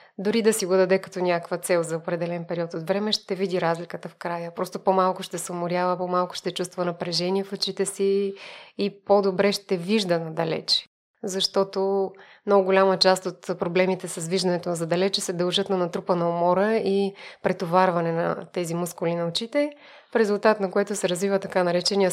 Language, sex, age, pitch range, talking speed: Bulgarian, female, 20-39, 175-200 Hz, 175 wpm